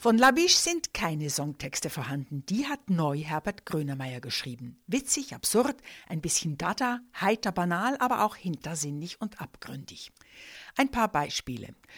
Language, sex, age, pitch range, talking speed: German, female, 60-79, 160-225 Hz, 140 wpm